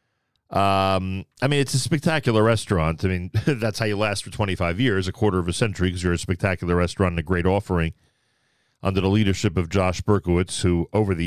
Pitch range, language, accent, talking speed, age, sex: 90-110 Hz, English, American, 210 wpm, 40-59, male